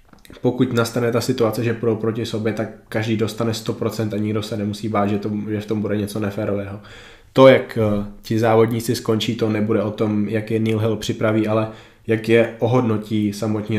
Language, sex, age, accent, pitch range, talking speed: Czech, male, 20-39, native, 105-115 Hz, 190 wpm